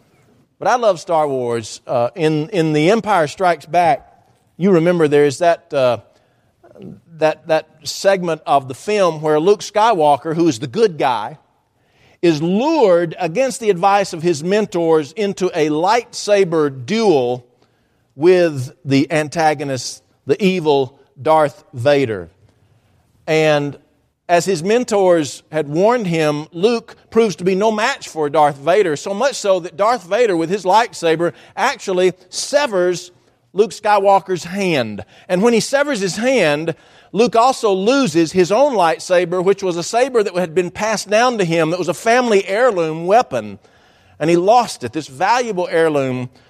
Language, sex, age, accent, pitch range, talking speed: English, male, 50-69, American, 150-200 Hz, 150 wpm